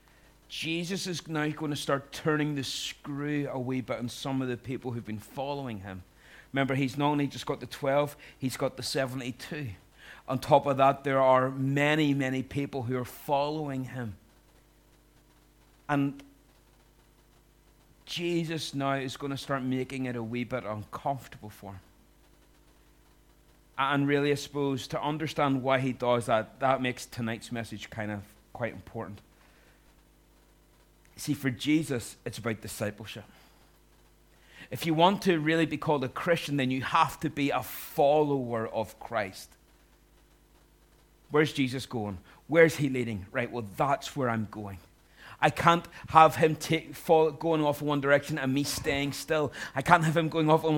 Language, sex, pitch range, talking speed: English, male, 115-150 Hz, 160 wpm